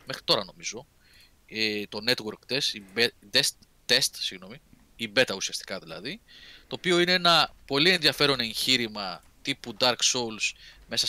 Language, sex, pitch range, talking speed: Greek, male, 105-140 Hz, 125 wpm